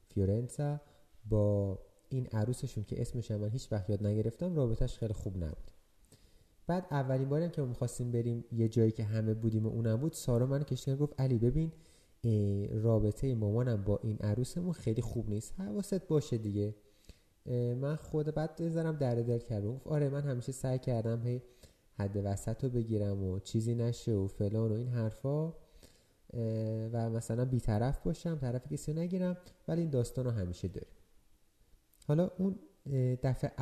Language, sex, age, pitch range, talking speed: Persian, male, 30-49, 110-140 Hz, 155 wpm